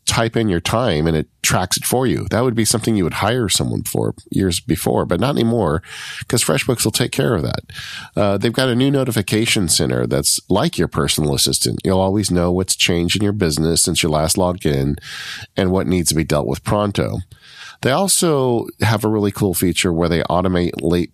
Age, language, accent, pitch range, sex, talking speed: 40-59, English, American, 85-110 Hz, male, 215 wpm